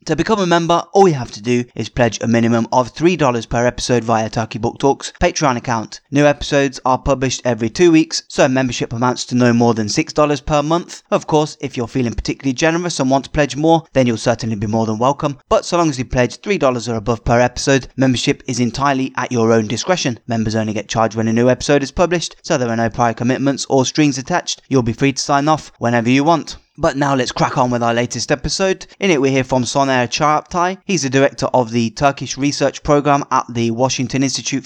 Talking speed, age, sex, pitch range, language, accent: 230 wpm, 20-39, male, 120-150 Hz, English, British